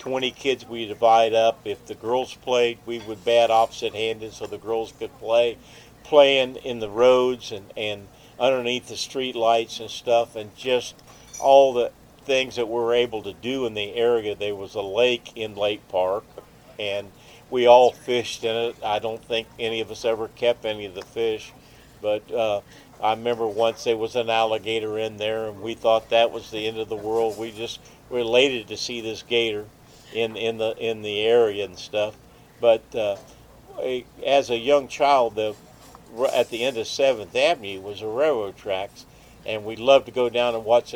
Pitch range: 110-120 Hz